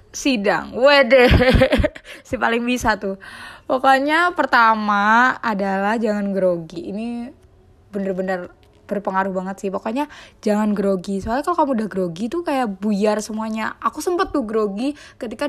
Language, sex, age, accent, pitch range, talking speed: Indonesian, female, 20-39, native, 200-260 Hz, 130 wpm